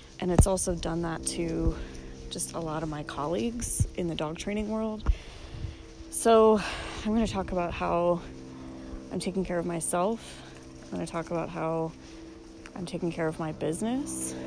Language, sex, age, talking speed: English, female, 20-39, 160 wpm